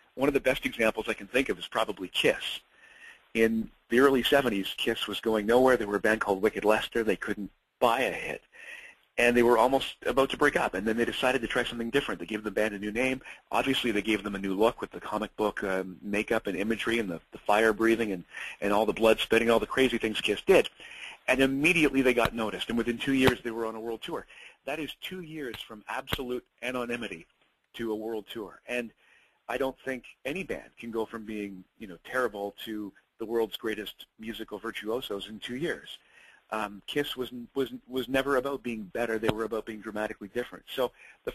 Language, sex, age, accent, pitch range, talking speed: English, male, 40-59, American, 110-130 Hz, 220 wpm